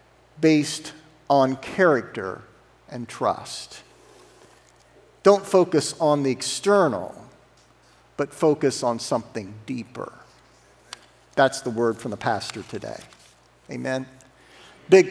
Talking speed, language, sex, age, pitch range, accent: 95 wpm, English, male, 50-69, 130-185 Hz, American